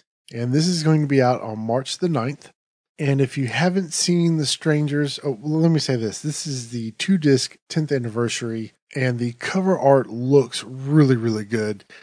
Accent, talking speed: American, 180 wpm